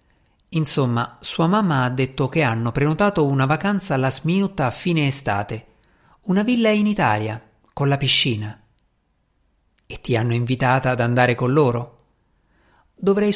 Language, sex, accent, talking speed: Italian, male, native, 140 wpm